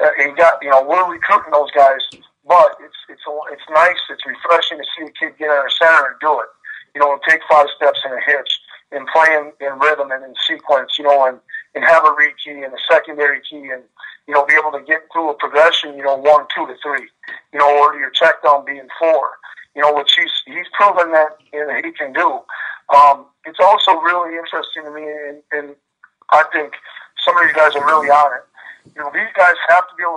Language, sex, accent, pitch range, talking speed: English, male, American, 145-160 Hz, 235 wpm